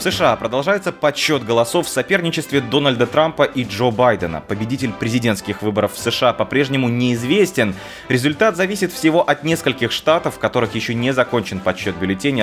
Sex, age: male, 20-39